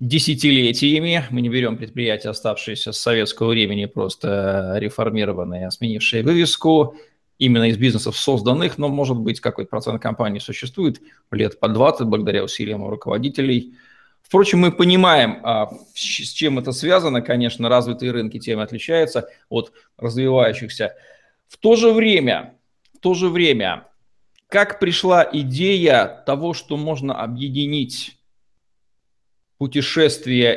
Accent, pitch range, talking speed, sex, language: native, 120-160 Hz, 110 wpm, male, Russian